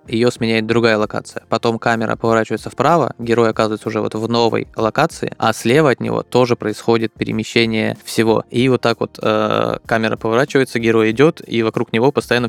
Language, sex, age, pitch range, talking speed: Russian, male, 20-39, 110-120 Hz, 175 wpm